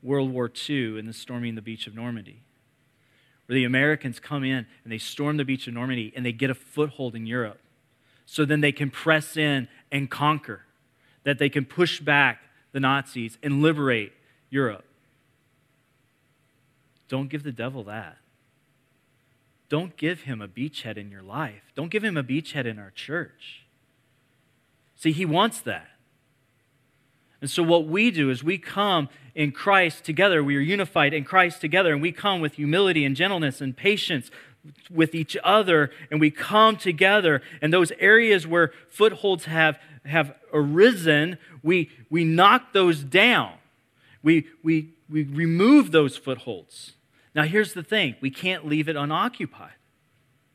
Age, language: 30-49, English